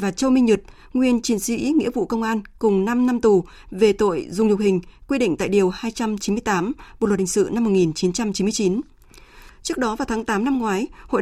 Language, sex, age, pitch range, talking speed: Vietnamese, female, 20-39, 195-250 Hz, 210 wpm